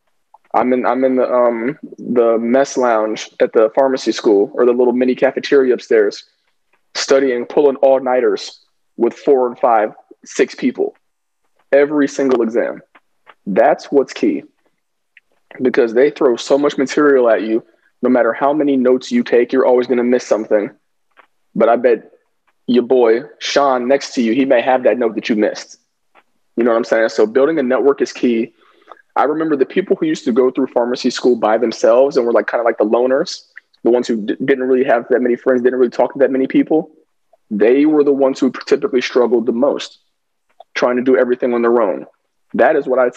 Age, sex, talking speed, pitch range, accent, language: 20-39, male, 195 wpm, 125-155 Hz, American, English